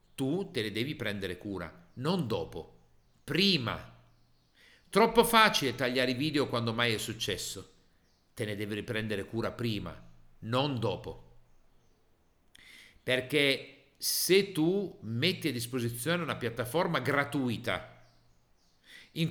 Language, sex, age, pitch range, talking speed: Italian, male, 50-69, 95-155 Hz, 110 wpm